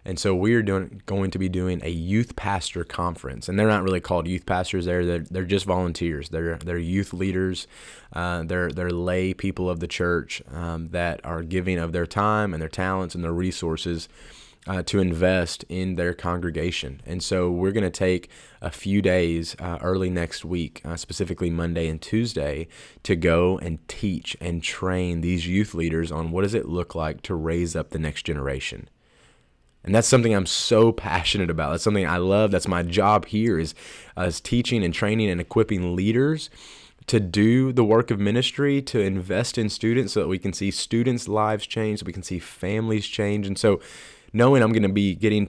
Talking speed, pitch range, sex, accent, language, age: 195 wpm, 85-105 Hz, male, American, English, 20-39